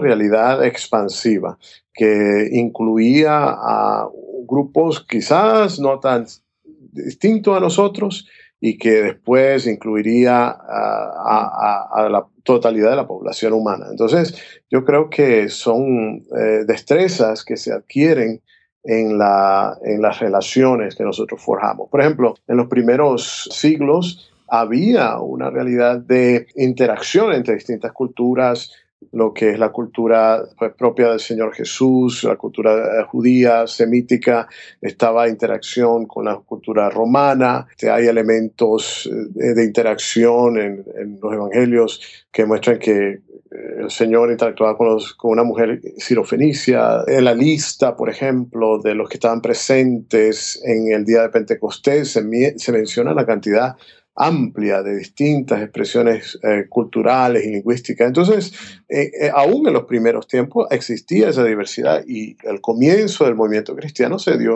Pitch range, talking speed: 110-130 Hz, 130 wpm